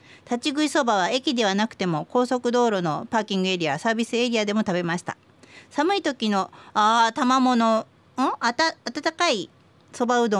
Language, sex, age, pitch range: Japanese, female, 40-59, 180-255 Hz